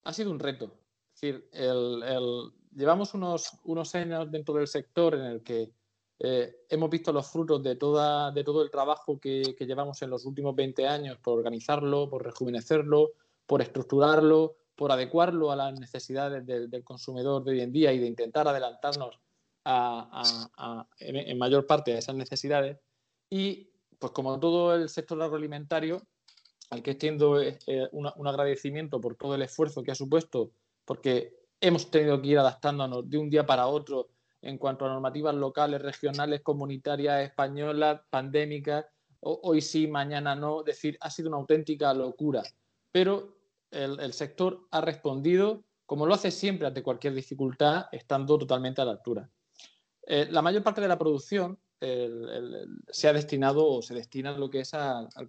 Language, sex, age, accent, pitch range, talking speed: Spanish, male, 20-39, Spanish, 130-155 Hz, 170 wpm